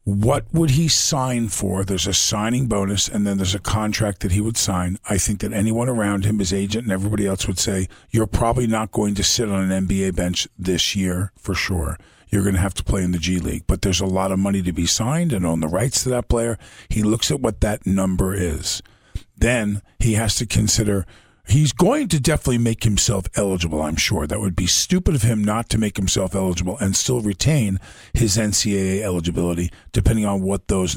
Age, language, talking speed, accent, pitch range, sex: 50-69, English, 220 wpm, American, 95-110 Hz, male